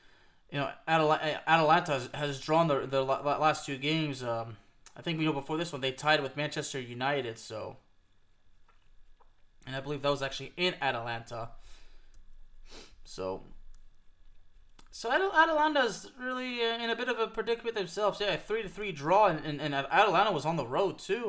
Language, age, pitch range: English, 20-39, 125-170 Hz